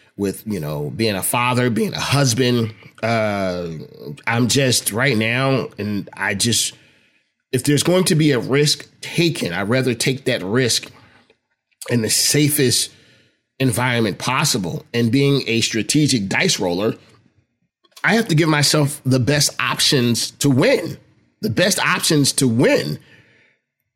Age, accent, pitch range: 30-49, American, 115-150 Hz